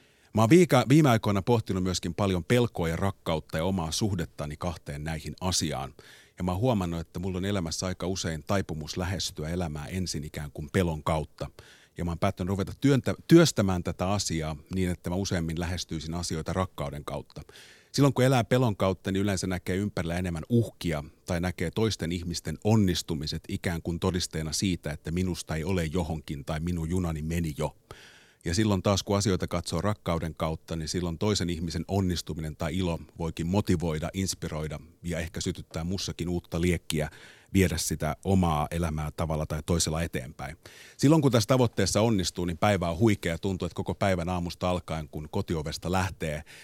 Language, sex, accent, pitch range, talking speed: Finnish, male, native, 80-95 Hz, 170 wpm